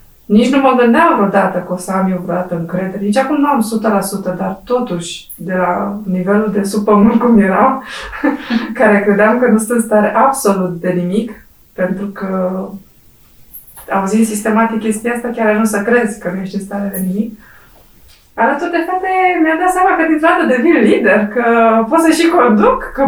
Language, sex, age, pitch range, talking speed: Romanian, female, 20-39, 205-310 Hz, 185 wpm